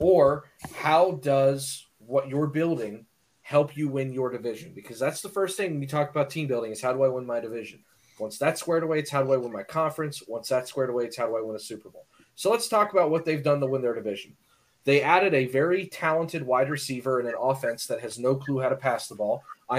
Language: English